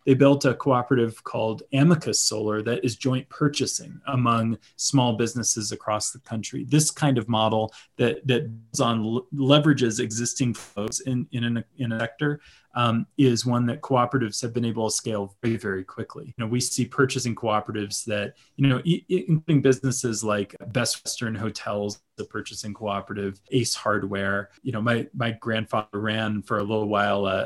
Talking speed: 170 wpm